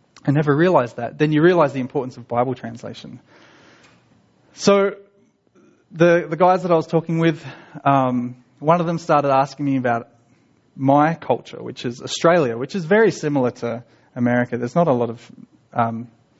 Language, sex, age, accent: English, male, 20-39, Australian